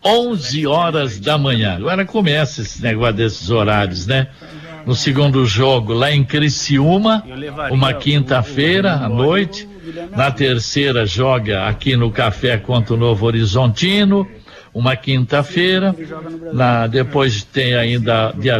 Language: Portuguese